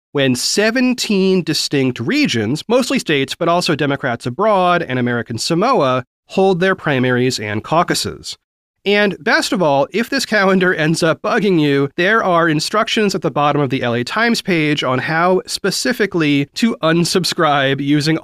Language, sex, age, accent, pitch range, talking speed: English, male, 30-49, American, 120-185 Hz, 150 wpm